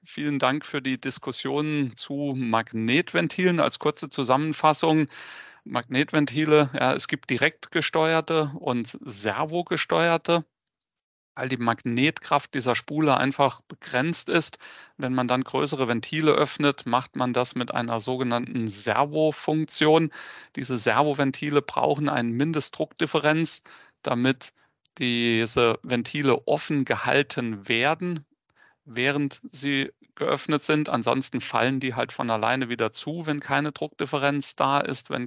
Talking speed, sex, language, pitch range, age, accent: 110 wpm, male, German, 125-150 Hz, 30-49, German